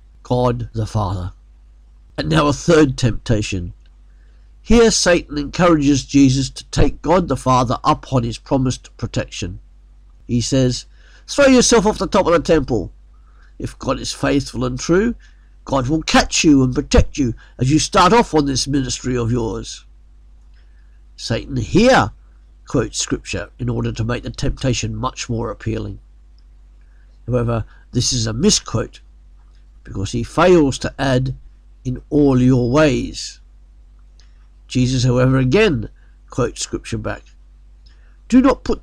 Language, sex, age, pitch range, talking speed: English, male, 50-69, 105-140 Hz, 140 wpm